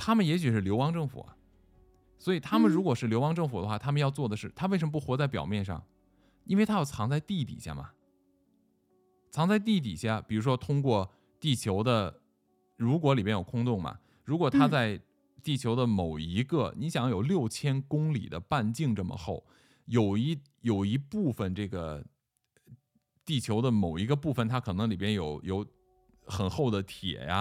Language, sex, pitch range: Chinese, male, 95-150 Hz